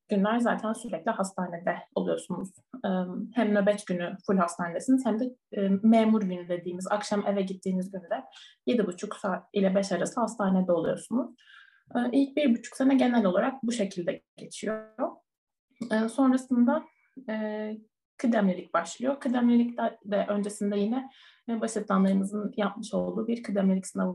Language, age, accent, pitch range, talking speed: Turkish, 30-49, native, 195-250 Hz, 125 wpm